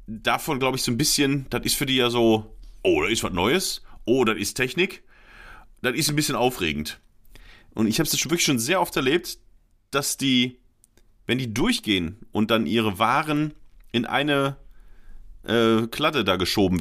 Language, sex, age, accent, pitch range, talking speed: German, male, 40-59, German, 115-180 Hz, 180 wpm